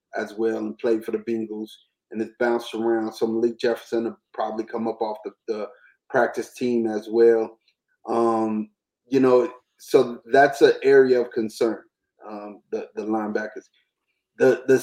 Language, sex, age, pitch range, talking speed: English, male, 30-49, 115-155 Hz, 160 wpm